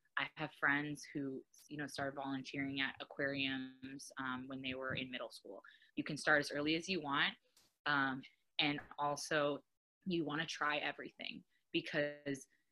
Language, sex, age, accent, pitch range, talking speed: English, female, 20-39, American, 140-165 Hz, 160 wpm